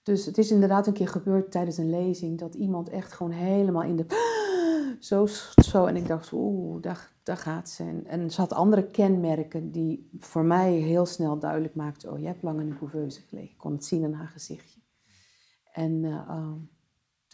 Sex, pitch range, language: female, 160-190 Hz, Dutch